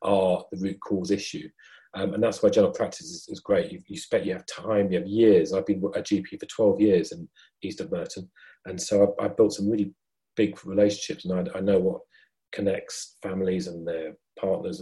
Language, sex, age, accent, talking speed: English, male, 30-49, British, 205 wpm